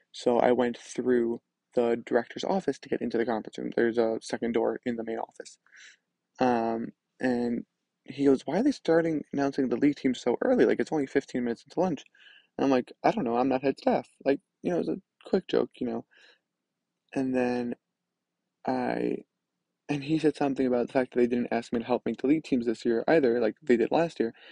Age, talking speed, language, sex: 20-39, 225 wpm, English, male